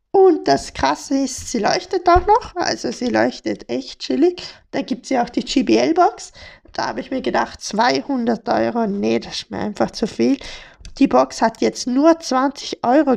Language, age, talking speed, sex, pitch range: German, 20-39, 185 wpm, female, 230-310 Hz